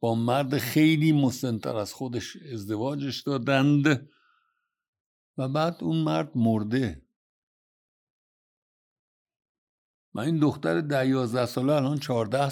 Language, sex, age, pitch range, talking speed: Persian, male, 60-79, 115-150 Hz, 95 wpm